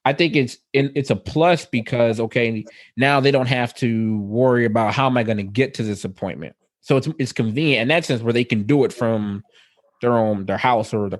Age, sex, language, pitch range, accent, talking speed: 20-39, male, English, 110-135 Hz, American, 230 wpm